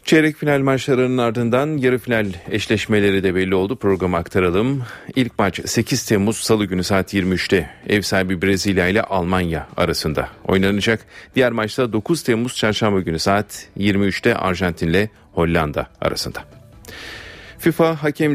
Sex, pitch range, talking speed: male, 95-120 Hz, 135 wpm